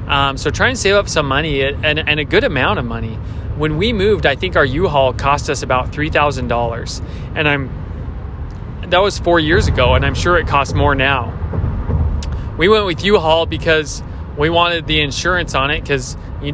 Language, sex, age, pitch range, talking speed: English, male, 20-39, 100-150 Hz, 190 wpm